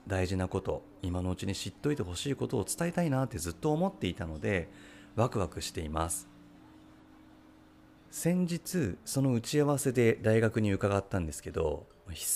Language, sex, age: Japanese, male, 30-49